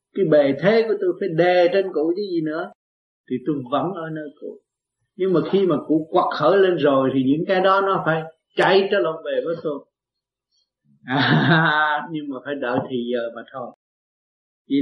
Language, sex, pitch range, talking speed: Vietnamese, male, 135-190 Hz, 200 wpm